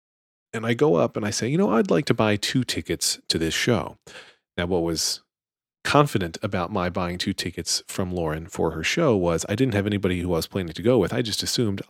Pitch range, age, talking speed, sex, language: 90-125 Hz, 40-59, 235 wpm, male, English